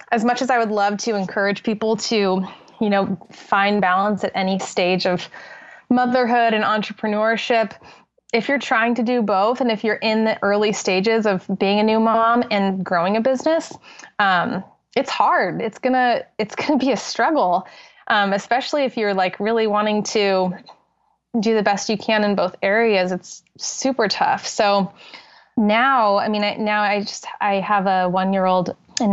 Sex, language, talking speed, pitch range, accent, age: female, English, 175 wpm, 190-220 Hz, American, 20-39